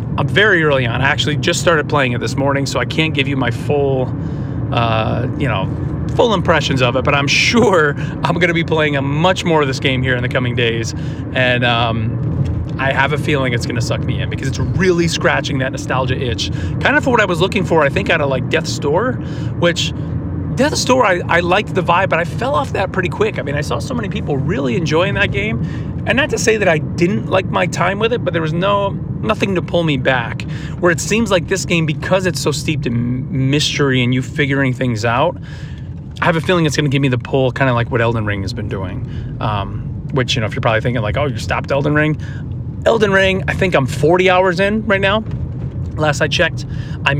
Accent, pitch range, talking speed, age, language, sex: American, 130-155 Hz, 245 wpm, 30-49, English, male